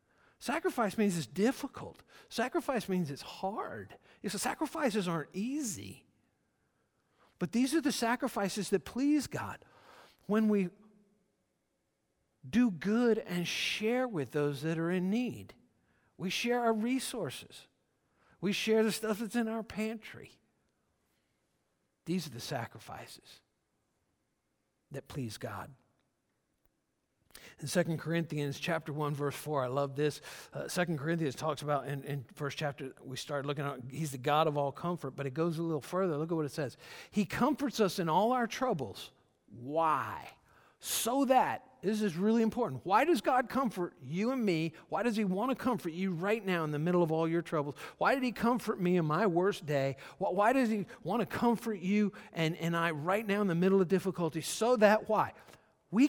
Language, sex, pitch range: English, male, 155-225 Hz